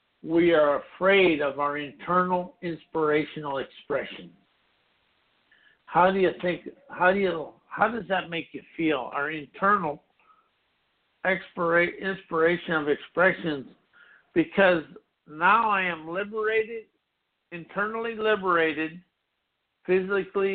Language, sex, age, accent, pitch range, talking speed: English, male, 60-79, American, 150-190 Hz, 100 wpm